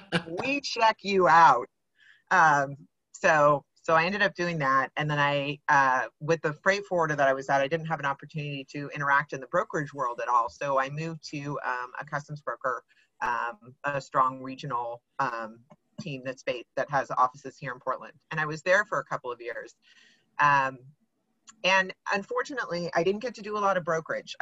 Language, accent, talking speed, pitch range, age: English, American, 195 wpm, 145-185 Hz, 30-49